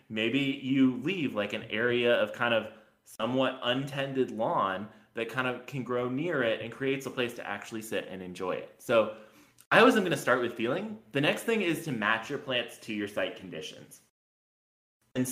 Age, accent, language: 20-39, American, English